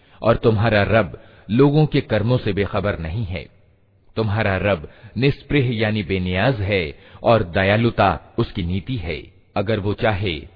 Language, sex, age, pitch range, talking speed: Hindi, male, 40-59, 95-115 Hz, 135 wpm